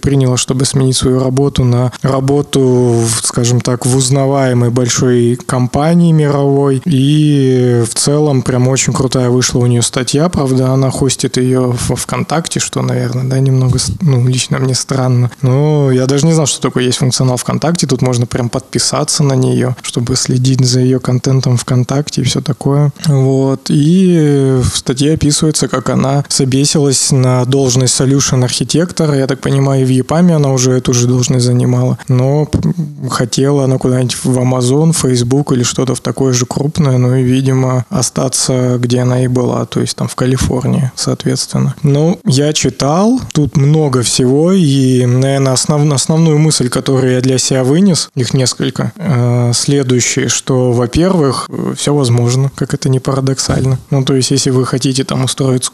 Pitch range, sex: 125-140 Hz, male